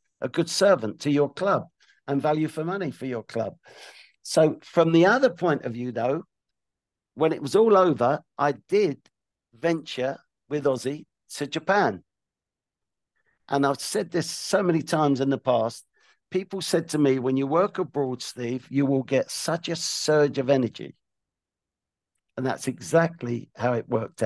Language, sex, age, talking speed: English, male, 50-69, 165 wpm